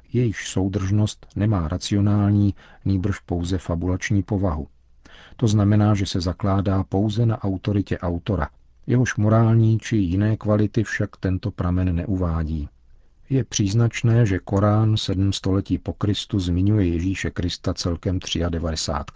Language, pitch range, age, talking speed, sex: Czech, 90-105 Hz, 50-69, 120 wpm, male